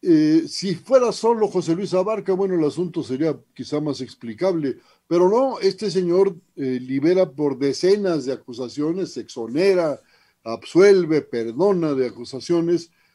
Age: 50-69